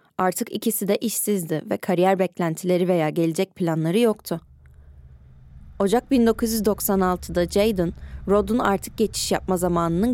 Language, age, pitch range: Turkish, 20-39, 165-205 Hz